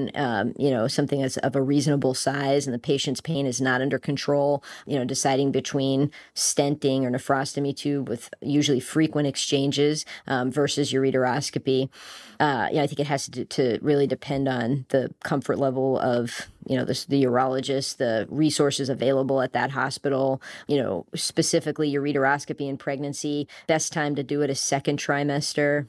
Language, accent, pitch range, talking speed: English, American, 135-145 Hz, 170 wpm